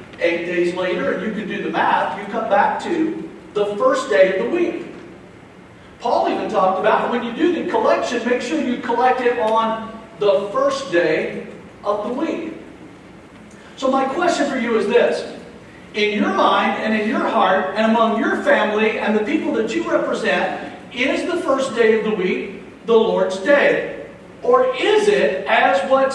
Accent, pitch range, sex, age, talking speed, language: American, 205-270 Hz, male, 50-69, 180 wpm, English